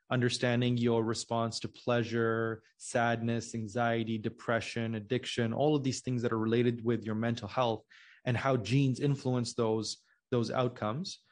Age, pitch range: 20-39, 115-140 Hz